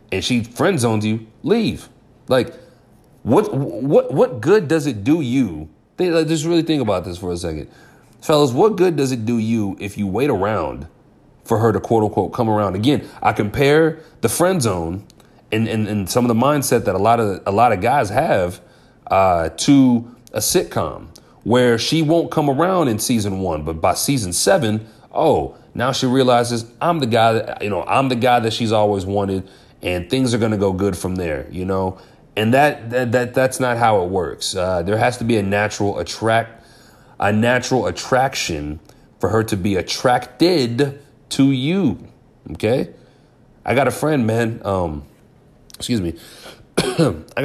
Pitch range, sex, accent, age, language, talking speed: 100-130 Hz, male, American, 30-49, English, 185 wpm